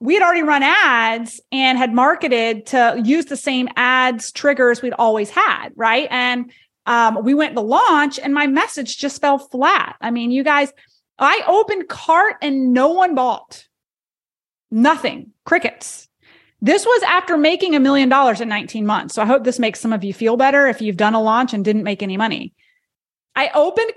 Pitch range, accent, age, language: 240-310 Hz, American, 30-49, English